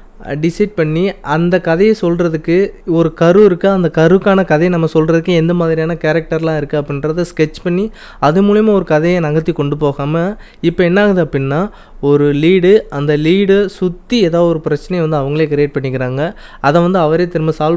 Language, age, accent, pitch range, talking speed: Tamil, 20-39, native, 150-185 Hz, 160 wpm